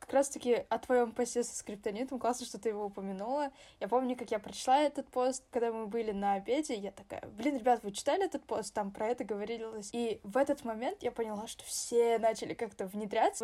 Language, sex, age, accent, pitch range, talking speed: Russian, female, 10-29, native, 210-260 Hz, 210 wpm